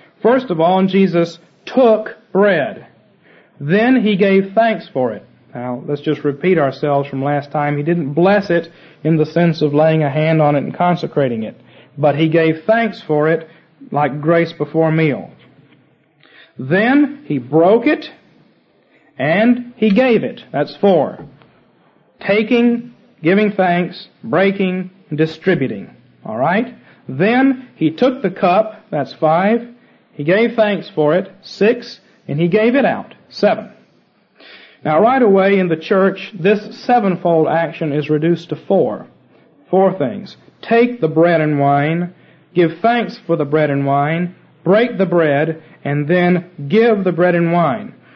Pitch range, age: 155-210 Hz, 40-59